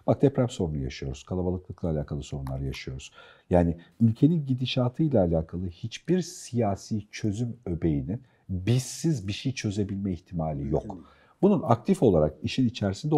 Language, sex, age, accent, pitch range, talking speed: Turkish, male, 50-69, native, 90-130 Hz, 125 wpm